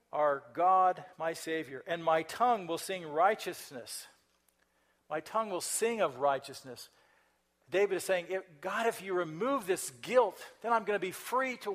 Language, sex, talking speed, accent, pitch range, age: English, male, 165 wpm, American, 145-190 Hz, 50-69